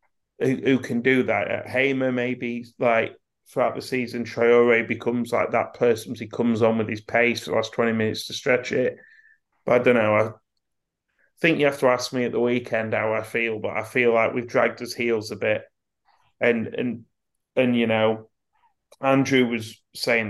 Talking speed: 190 wpm